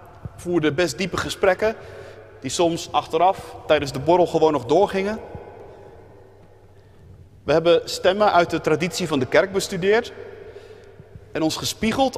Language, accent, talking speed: Dutch, Dutch, 130 wpm